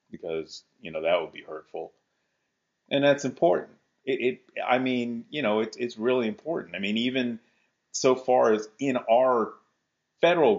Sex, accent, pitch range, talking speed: male, American, 105-145 Hz, 165 wpm